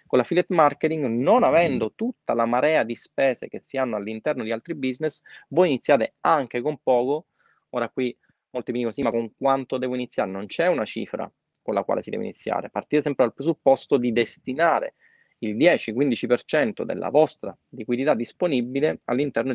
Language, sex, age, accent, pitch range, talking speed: Italian, male, 30-49, native, 115-145 Hz, 170 wpm